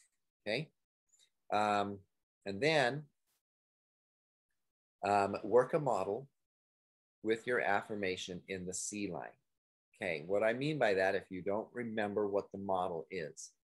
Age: 30-49